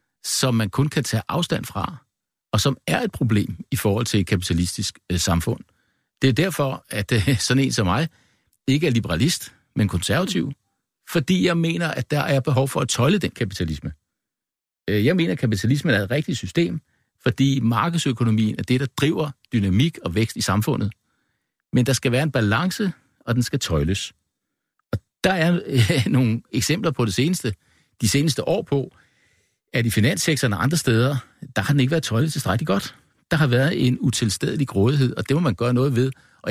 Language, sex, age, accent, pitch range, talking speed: Danish, male, 60-79, native, 105-140 Hz, 180 wpm